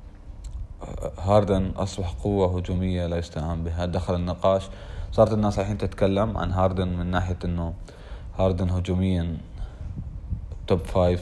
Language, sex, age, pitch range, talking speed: Arabic, male, 30-49, 85-95 Hz, 120 wpm